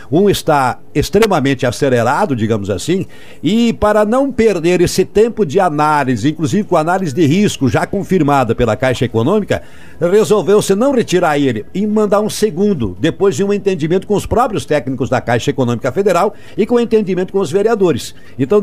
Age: 60-79